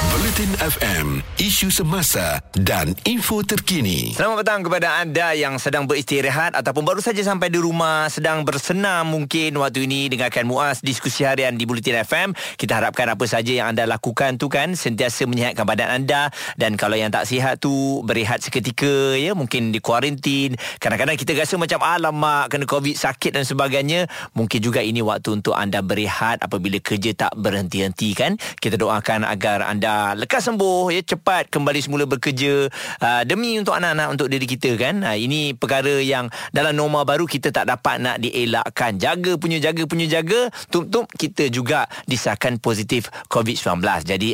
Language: Malay